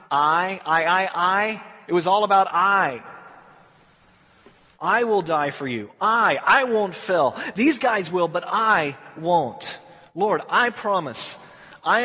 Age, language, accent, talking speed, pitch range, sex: 30-49, English, American, 140 wpm, 165-225 Hz, male